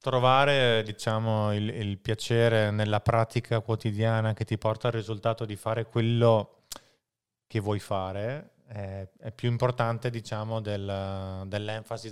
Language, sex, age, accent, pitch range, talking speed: Italian, male, 20-39, native, 105-120 Hz, 130 wpm